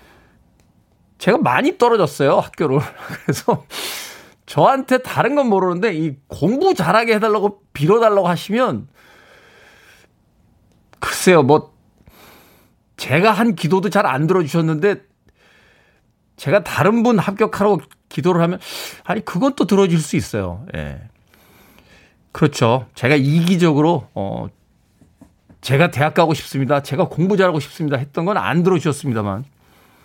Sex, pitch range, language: male, 125-190 Hz, Korean